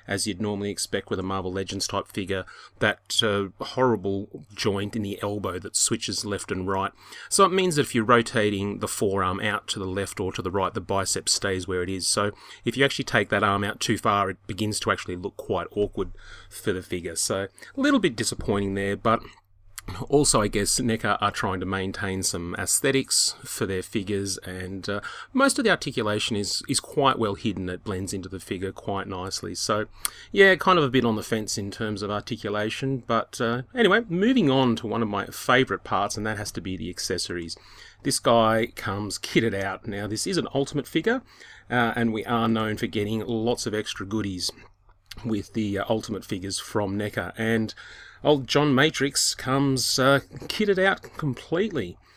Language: English